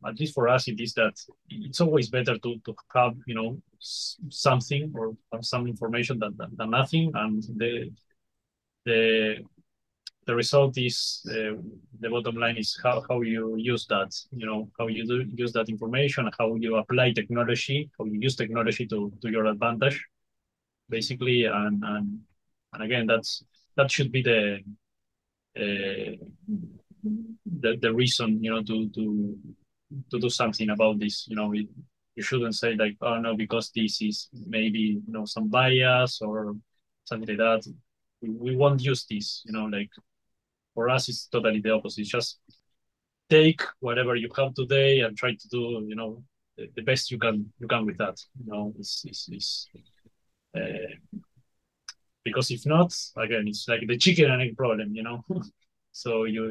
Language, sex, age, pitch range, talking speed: English, male, 20-39, 110-130 Hz, 170 wpm